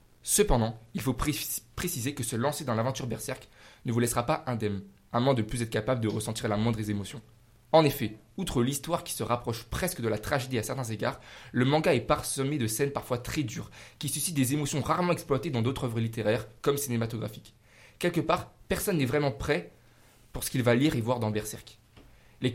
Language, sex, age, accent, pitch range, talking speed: French, male, 20-39, French, 115-145 Hz, 205 wpm